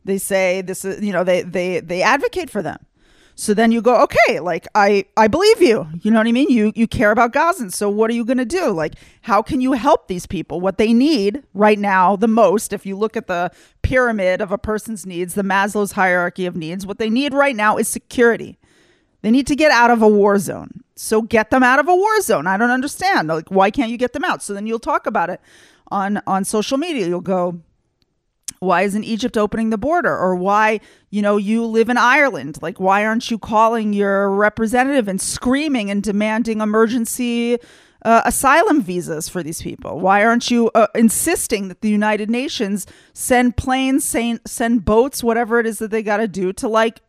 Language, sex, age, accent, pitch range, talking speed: English, female, 30-49, American, 200-250 Hz, 215 wpm